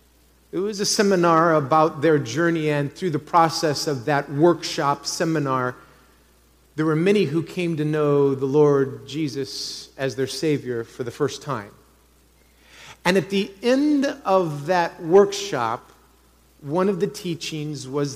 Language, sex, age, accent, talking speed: English, male, 40-59, American, 145 wpm